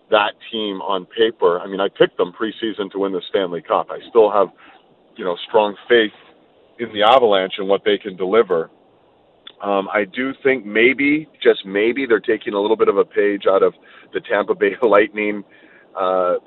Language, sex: English, male